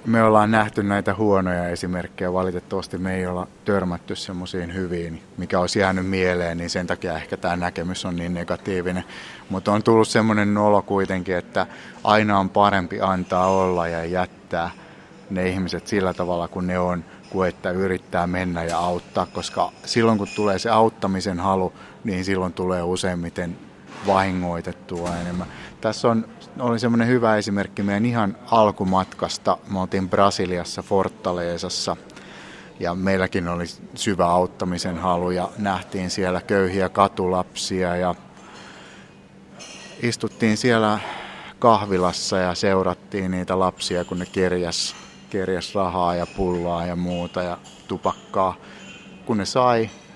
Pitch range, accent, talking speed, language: 90-100 Hz, native, 130 wpm, Finnish